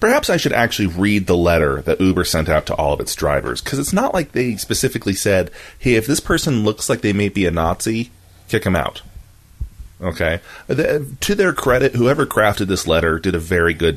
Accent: American